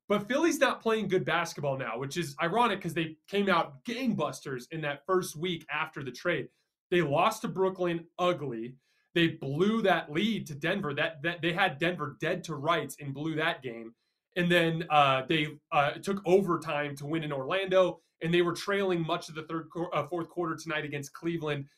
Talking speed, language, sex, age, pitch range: 195 wpm, English, male, 20-39, 145-185 Hz